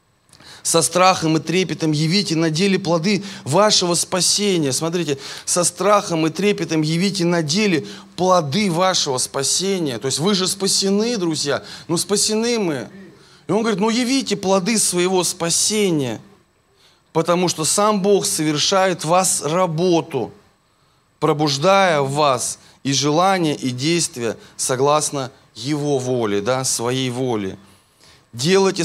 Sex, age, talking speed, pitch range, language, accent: male, 20-39, 125 wpm, 140-190 Hz, Russian, native